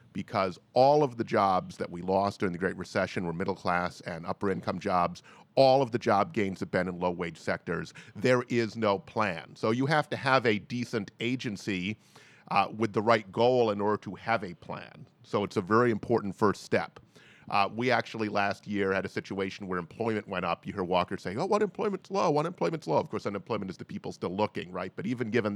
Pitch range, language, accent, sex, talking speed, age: 100-125 Hz, English, American, male, 220 wpm, 40-59